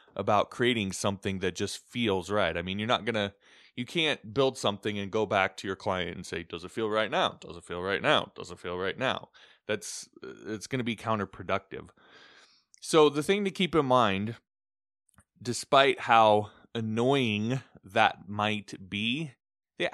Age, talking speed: 20-39, 175 wpm